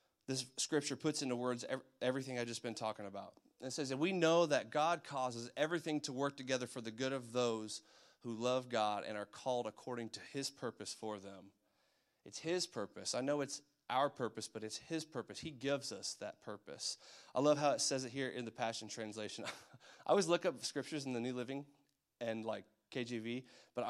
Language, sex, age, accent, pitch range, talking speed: English, male, 30-49, American, 115-145 Hz, 205 wpm